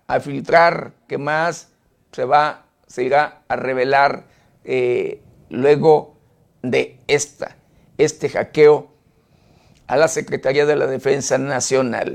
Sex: male